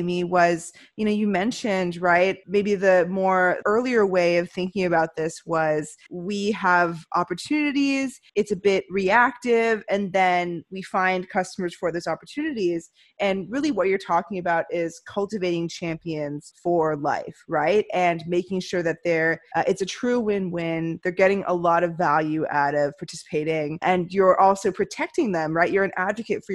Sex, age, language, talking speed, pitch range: female, 20-39, English, 165 wpm, 165-200 Hz